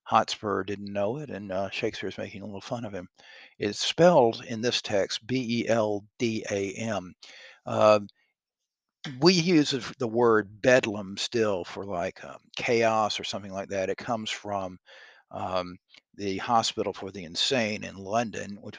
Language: English